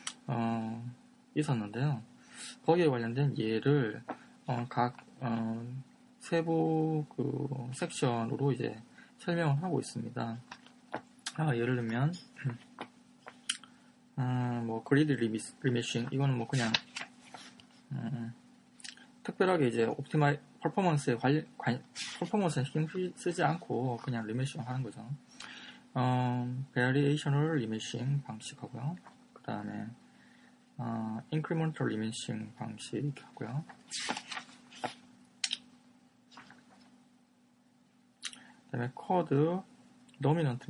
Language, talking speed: English, 75 wpm